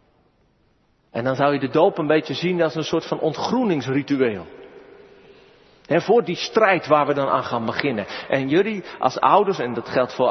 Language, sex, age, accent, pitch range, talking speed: Dutch, male, 40-59, Dutch, 155-220 Hz, 180 wpm